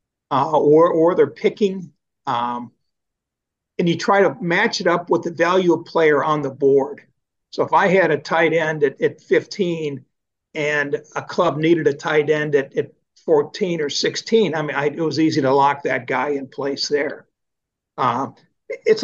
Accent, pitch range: American, 145-185 Hz